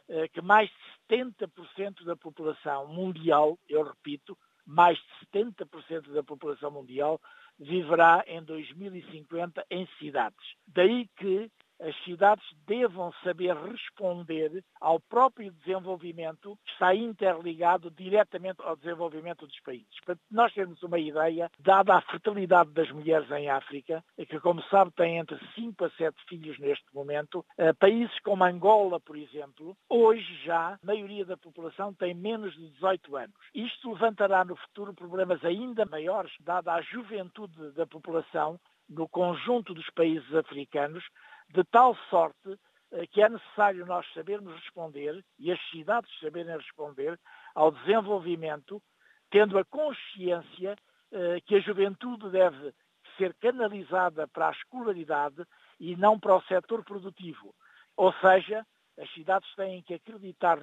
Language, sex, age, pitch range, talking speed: Portuguese, male, 60-79, 165-205 Hz, 135 wpm